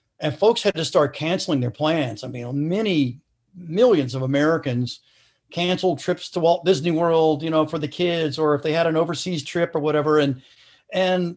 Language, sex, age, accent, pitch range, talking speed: English, male, 50-69, American, 145-180 Hz, 190 wpm